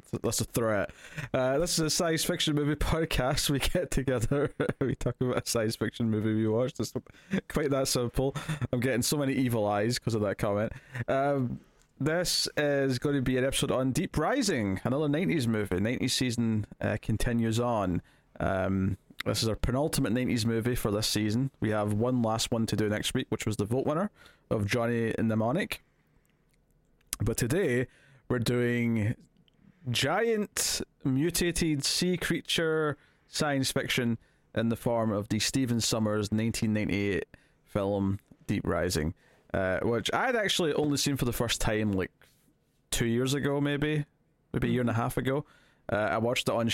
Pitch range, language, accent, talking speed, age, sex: 110-140 Hz, English, British, 170 wpm, 20-39, male